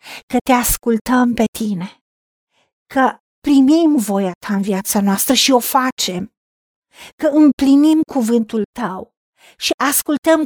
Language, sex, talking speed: Romanian, female, 120 wpm